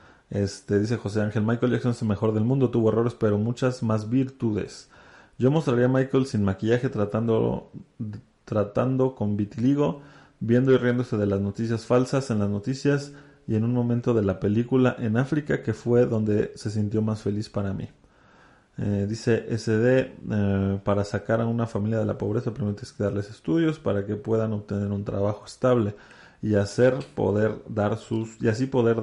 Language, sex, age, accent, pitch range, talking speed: Spanish, male, 30-49, Mexican, 105-120 Hz, 180 wpm